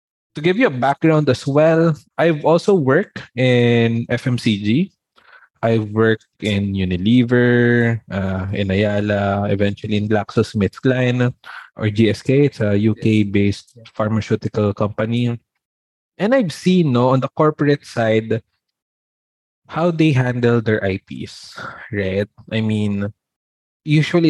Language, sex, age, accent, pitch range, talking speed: Filipino, male, 20-39, native, 105-140 Hz, 120 wpm